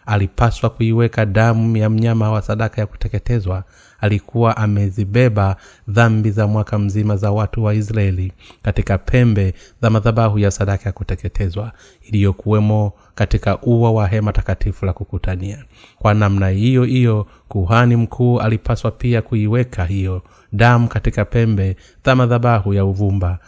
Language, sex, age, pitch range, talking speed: Swahili, male, 30-49, 95-115 Hz, 135 wpm